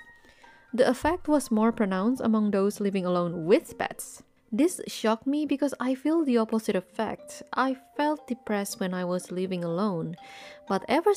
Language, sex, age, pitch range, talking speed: English, female, 20-39, 205-290 Hz, 160 wpm